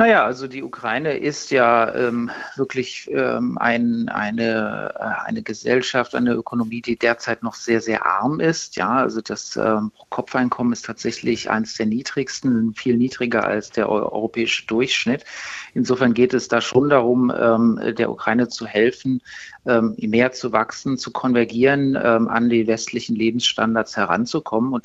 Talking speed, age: 150 wpm, 50-69